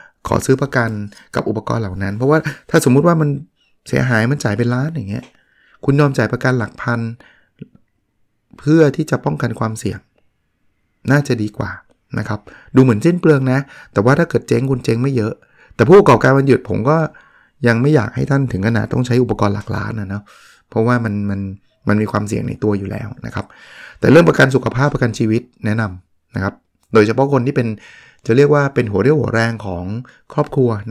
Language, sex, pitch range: Thai, male, 105-135 Hz